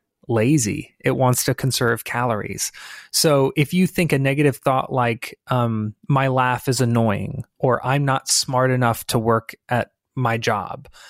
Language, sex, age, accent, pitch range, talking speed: English, male, 20-39, American, 125-150 Hz, 155 wpm